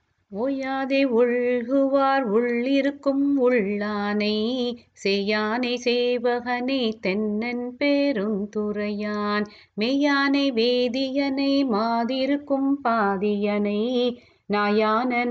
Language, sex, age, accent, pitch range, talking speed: Tamil, female, 30-49, native, 210-265 Hz, 55 wpm